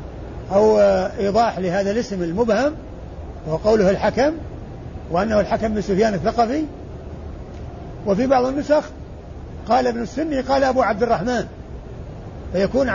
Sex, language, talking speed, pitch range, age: male, Arabic, 105 wpm, 195-240 Hz, 50-69